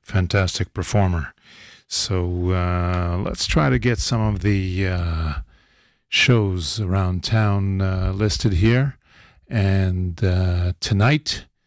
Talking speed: 110 wpm